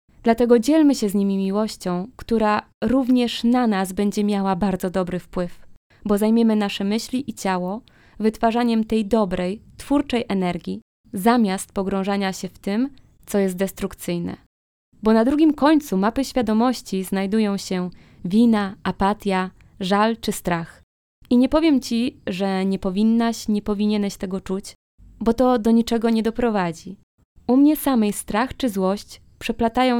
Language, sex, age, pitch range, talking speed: Polish, female, 20-39, 190-230 Hz, 140 wpm